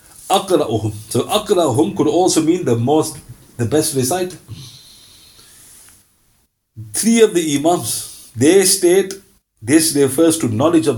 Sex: male